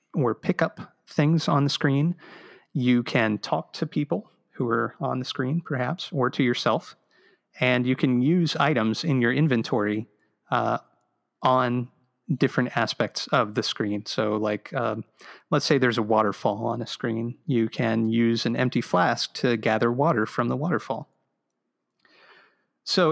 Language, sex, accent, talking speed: English, male, American, 155 wpm